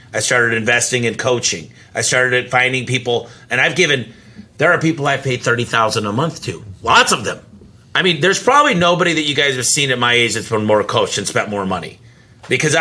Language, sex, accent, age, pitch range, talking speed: English, male, American, 30-49, 110-145 Hz, 215 wpm